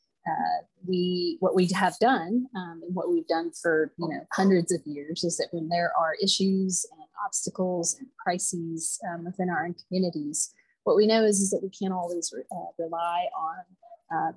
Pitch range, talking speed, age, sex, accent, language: 175-215 Hz, 190 wpm, 30-49, female, American, English